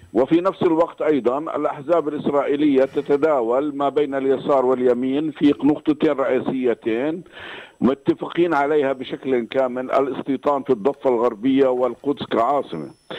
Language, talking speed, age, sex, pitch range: Arabic, 110 wpm, 50-69, male, 130-155 Hz